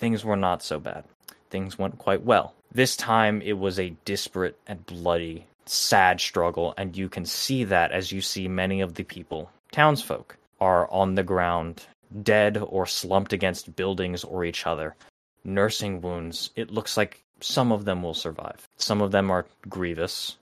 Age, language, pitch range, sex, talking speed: 20-39, English, 85-100 Hz, male, 175 wpm